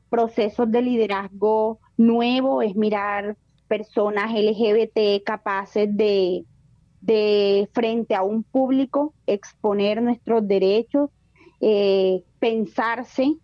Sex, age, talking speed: female, 30-49, 90 wpm